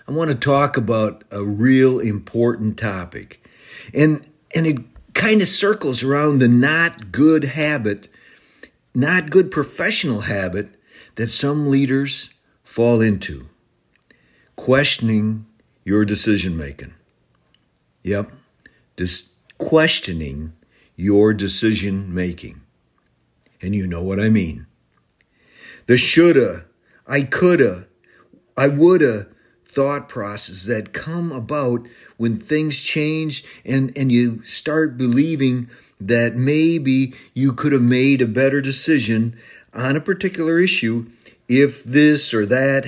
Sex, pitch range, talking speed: male, 105-140 Hz, 115 wpm